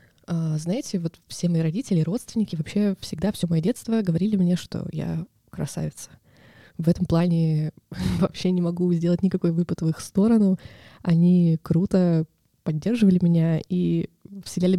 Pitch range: 165-190 Hz